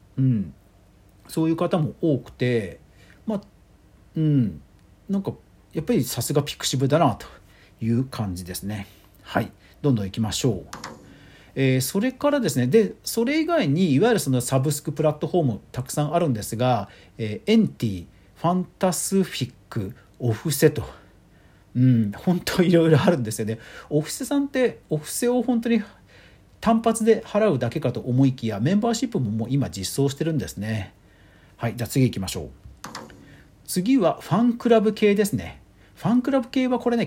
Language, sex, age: Japanese, male, 50-69